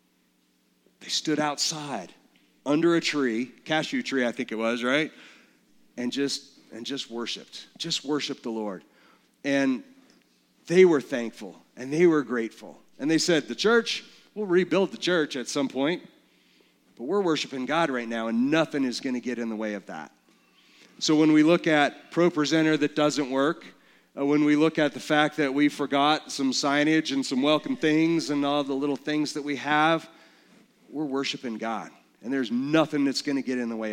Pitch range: 125-155 Hz